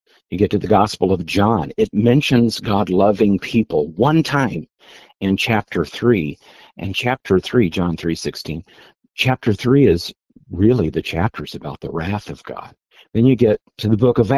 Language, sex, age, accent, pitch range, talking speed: English, male, 50-69, American, 85-115 Hz, 170 wpm